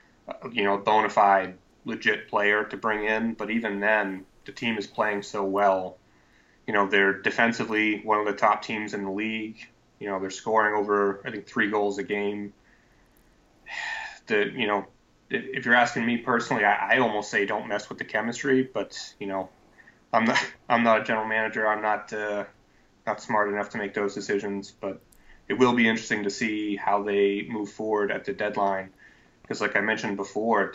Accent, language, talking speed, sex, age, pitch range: American, English, 190 wpm, male, 20-39, 100-110 Hz